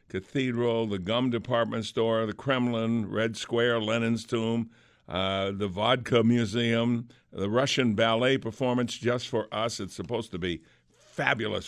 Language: English